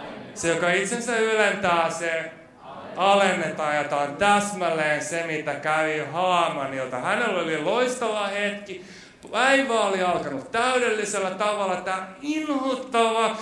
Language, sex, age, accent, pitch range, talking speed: Finnish, male, 30-49, native, 155-230 Hz, 105 wpm